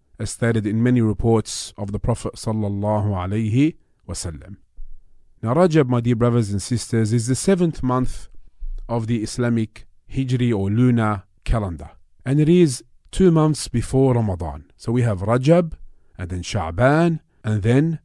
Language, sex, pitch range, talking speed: English, male, 100-130 Hz, 145 wpm